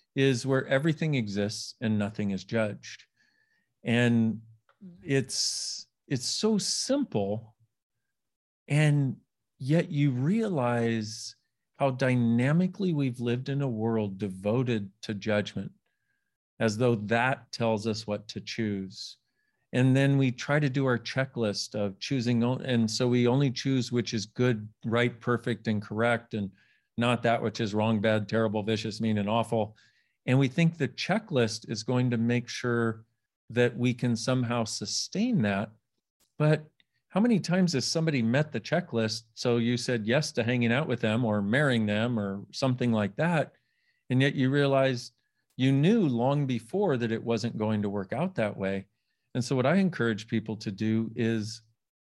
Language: English